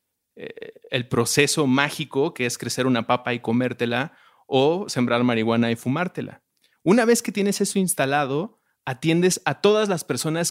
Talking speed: 150 wpm